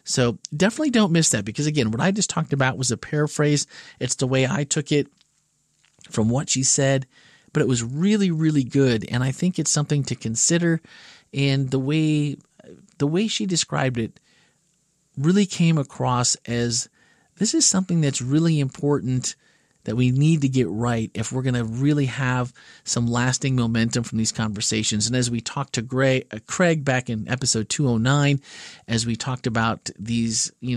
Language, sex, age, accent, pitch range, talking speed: English, male, 40-59, American, 120-150 Hz, 180 wpm